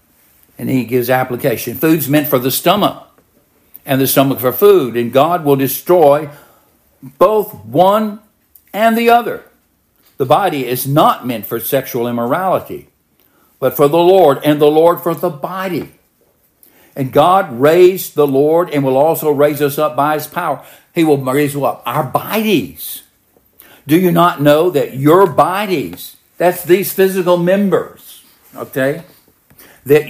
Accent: American